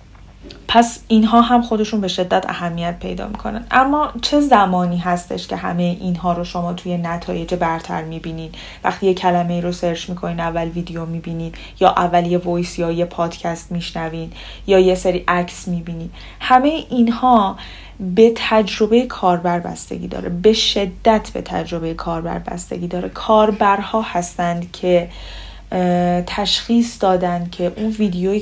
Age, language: 10-29, Persian